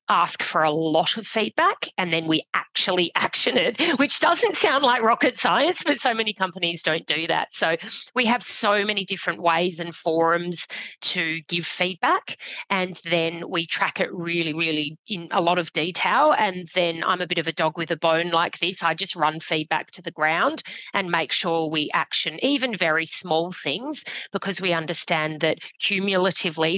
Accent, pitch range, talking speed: Australian, 165-195 Hz, 185 wpm